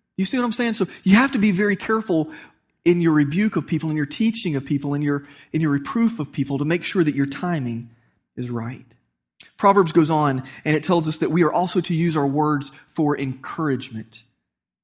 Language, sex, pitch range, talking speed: English, male, 135-190 Hz, 220 wpm